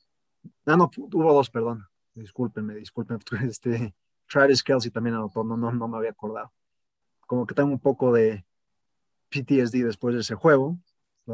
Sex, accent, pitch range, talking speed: male, Mexican, 120-150 Hz, 160 wpm